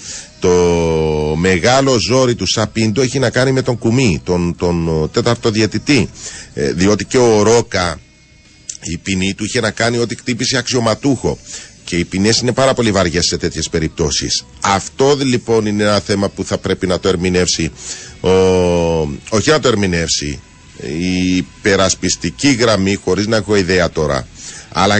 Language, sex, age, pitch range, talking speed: Greek, male, 40-59, 85-125 Hz, 150 wpm